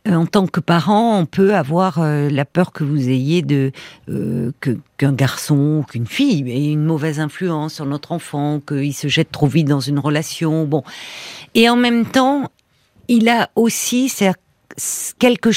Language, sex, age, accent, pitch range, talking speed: French, female, 50-69, French, 155-220 Hz, 170 wpm